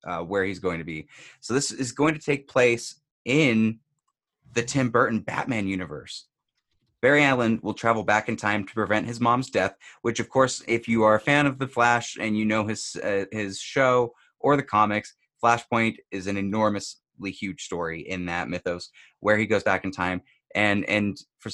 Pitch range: 100-130 Hz